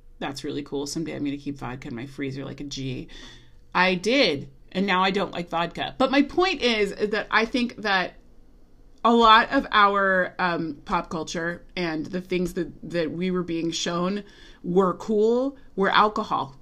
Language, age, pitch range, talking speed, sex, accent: English, 30-49, 170-265 Hz, 185 wpm, female, American